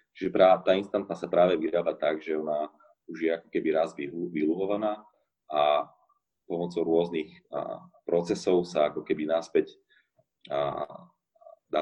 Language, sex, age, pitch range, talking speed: Slovak, male, 30-49, 85-115 Hz, 125 wpm